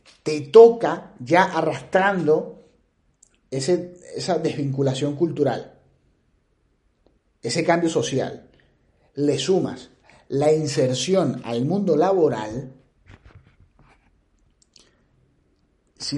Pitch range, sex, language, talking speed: 125-165 Hz, male, Spanish, 65 wpm